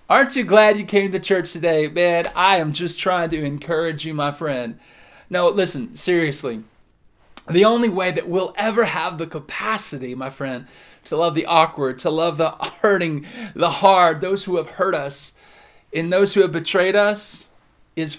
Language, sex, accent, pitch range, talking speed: English, male, American, 155-200 Hz, 180 wpm